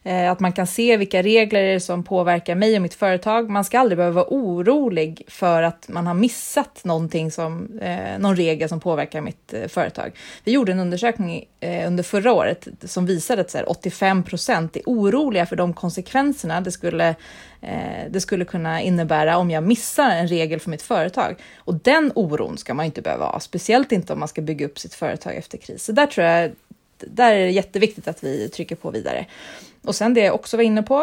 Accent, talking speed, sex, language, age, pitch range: native, 200 wpm, female, Swedish, 30-49, 170-220 Hz